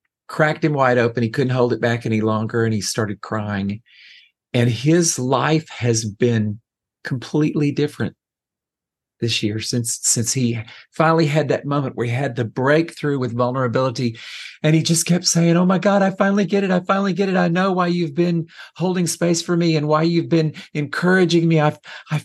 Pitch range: 115-155 Hz